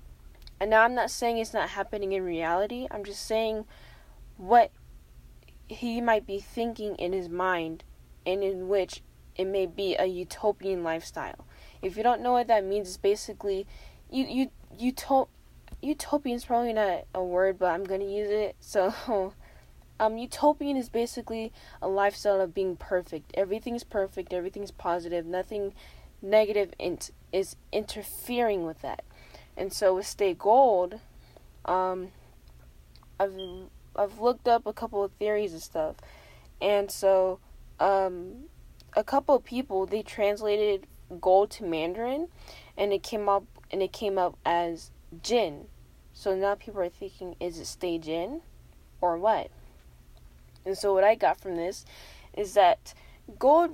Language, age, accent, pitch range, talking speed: English, 10-29, American, 175-220 Hz, 150 wpm